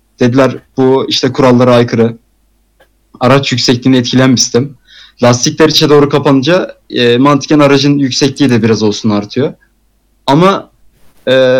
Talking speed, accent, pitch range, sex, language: 115 wpm, native, 130-160 Hz, male, Turkish